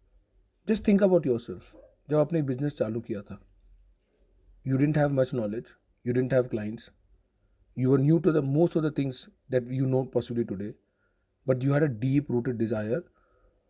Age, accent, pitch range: 40-59, Indian, 120-150 Hz